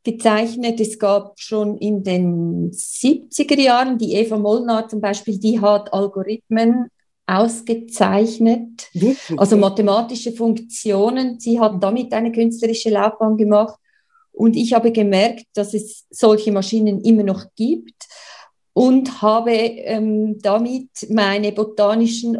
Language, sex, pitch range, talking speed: German, female, 205-230 Hz, 115 wpm